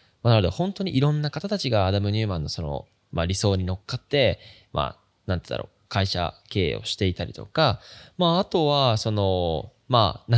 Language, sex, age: Japanese, male, 20-39